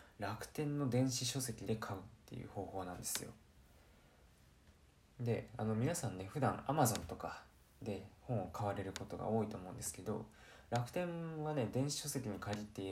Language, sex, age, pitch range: Japanese, male, 20-39, 95-125 Hz